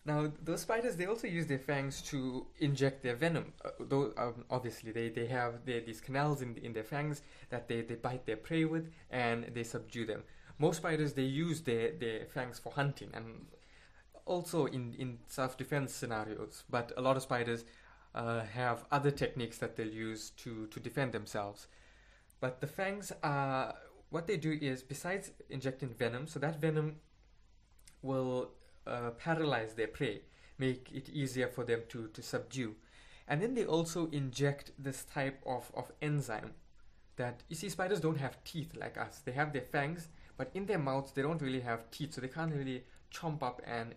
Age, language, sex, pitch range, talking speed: 20-39, English, male, 115-150 Hz, 185 wpm